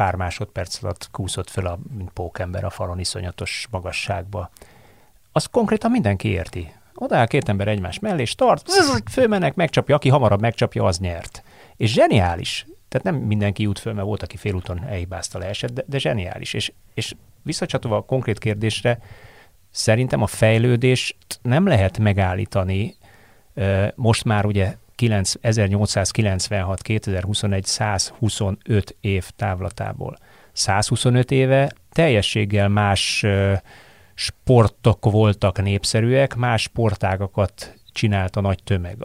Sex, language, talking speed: male, Hungarian, 115 wpm